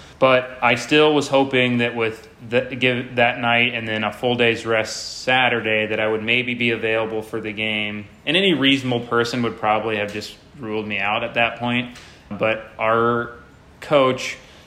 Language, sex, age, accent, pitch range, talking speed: English, male, 30-49, American, 105-120 Hz, 180 wpm